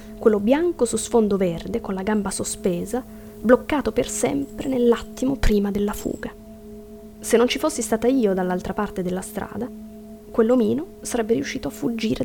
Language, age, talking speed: Italian, 20-39, 150 wpm